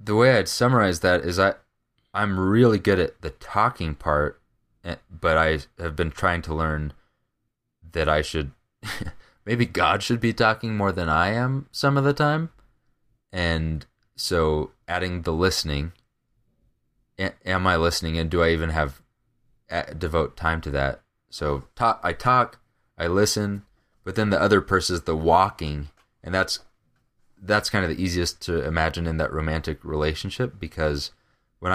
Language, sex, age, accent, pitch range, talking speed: English, male, 20-39, American, 80-115 Hz, 155 wpm